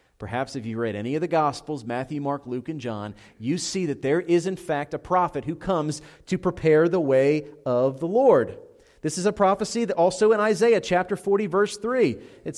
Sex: male